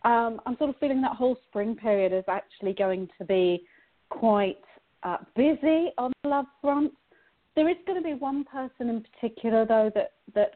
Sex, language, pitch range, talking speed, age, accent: female, English, 215-280 Hz, 190 wpm, 40-59, British